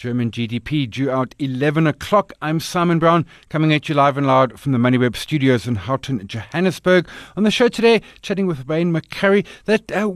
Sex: male